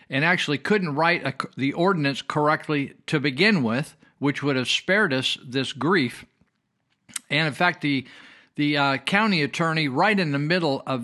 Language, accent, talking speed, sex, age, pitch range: English, American, 170 wpm, male, 50-69, 125-160 Hz